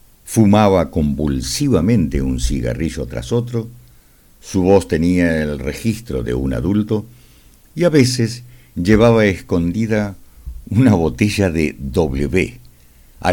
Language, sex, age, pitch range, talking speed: Spanish, male, 60-79, 70-110 Hz, 110 wpm